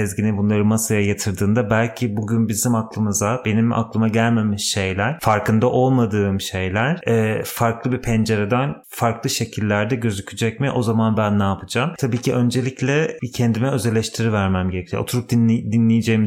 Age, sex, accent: 30-49, male, native